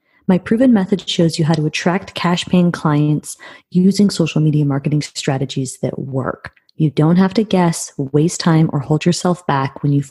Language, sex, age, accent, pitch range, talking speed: English, female, 30-49, American, 145-185 Hz, 185 wpm